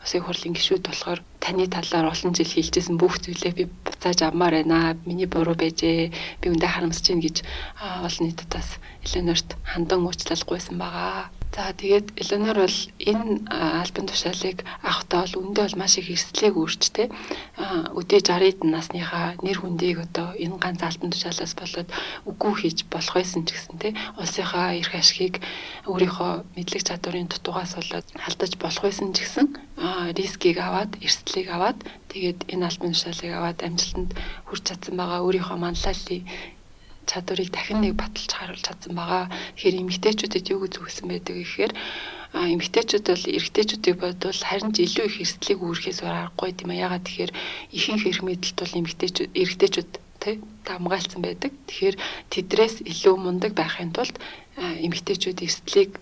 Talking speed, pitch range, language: 135 wpm, 170-195 Hz, English